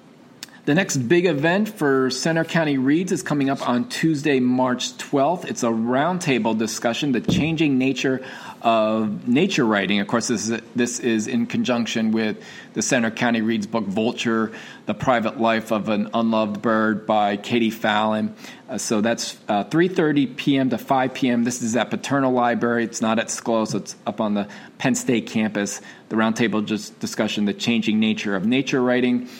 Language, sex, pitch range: English, male, 110-130 Hz